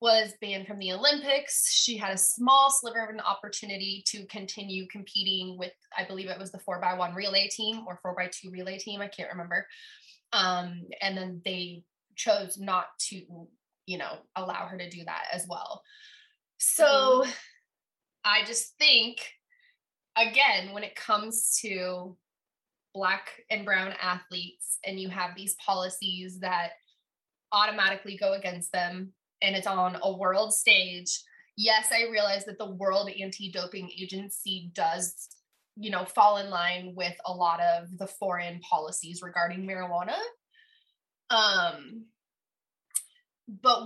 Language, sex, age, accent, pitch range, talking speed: English, female, 20-39, American, 185-230 Hz, 145 wpm